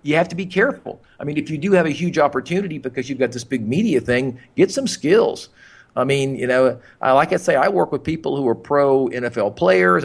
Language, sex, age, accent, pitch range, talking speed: English, male, 50-69, American, 115-155 Hz, 245 wpm